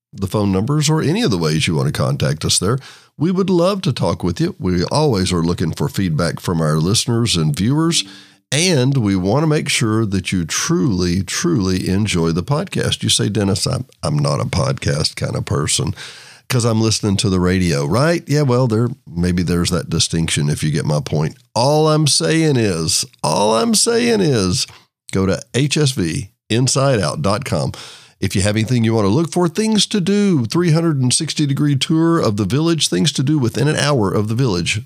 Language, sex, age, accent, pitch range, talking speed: English, male, 50-69, American, 95-150 Hz, 195 wpm